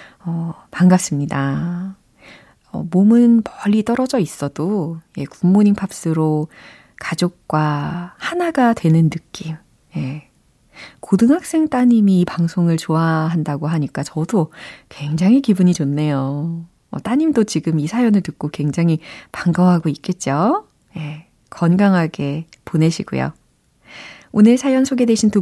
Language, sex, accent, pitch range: Korean, female, native, 160-245 Hz